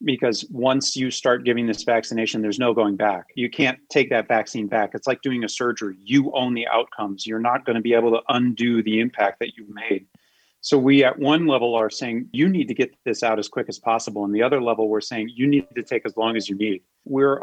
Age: 30-49